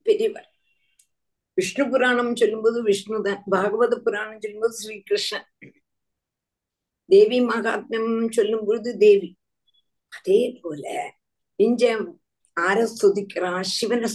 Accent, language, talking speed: native, Tamil, 80 wpm